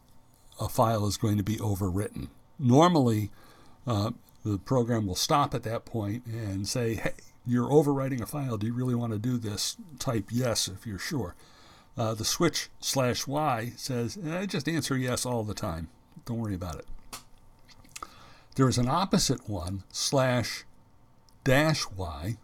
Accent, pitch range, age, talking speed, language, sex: American, 105-130 Hz, 60-79, 160 wpm, English, male